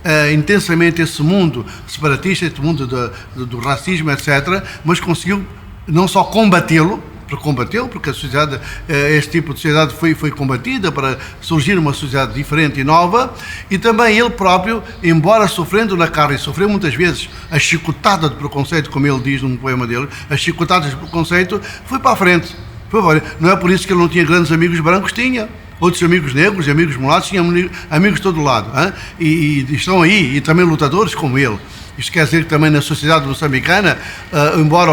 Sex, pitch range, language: male, 145-180 Hz, Portuguese